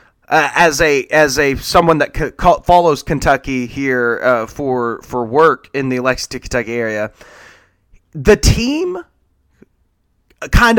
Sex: male